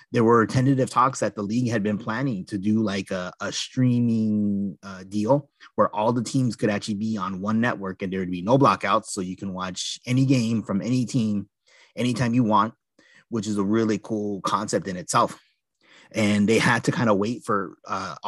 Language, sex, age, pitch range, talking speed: English, male, 30-49, 100-130 Hz, 205 wpm